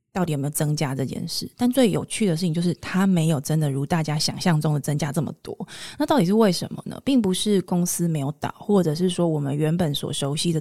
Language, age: Chinese, 20-39